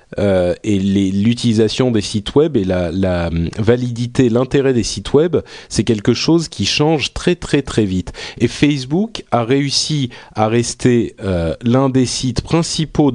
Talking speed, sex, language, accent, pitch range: 160 wpm, male, French, French, 105-135 Hz